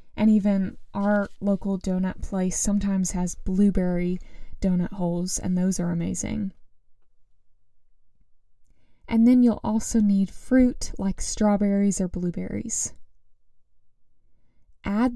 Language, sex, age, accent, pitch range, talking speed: English, female, 10-29, American, 195-235 Hz, 105 wpm